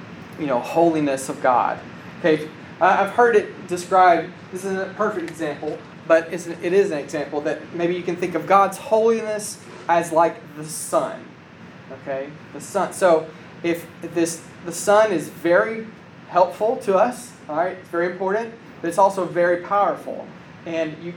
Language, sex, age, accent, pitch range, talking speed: English, male, 30-49, American, 155-190 Hz, 165 wpm